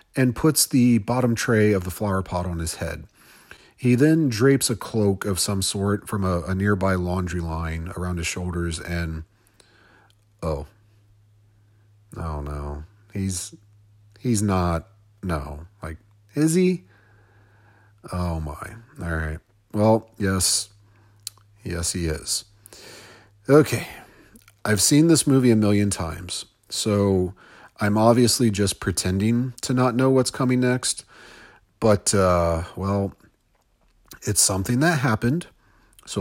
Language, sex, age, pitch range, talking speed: English, male, 40-59, 90-115 Hz, 125 wpm